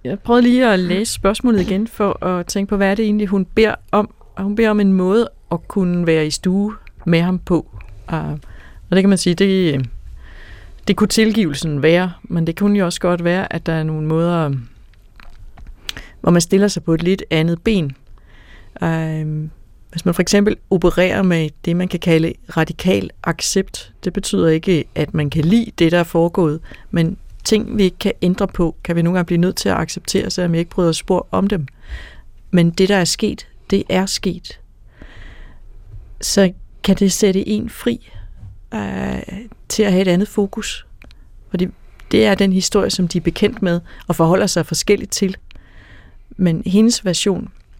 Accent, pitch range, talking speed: native, 160-200 Hz, 185 wpm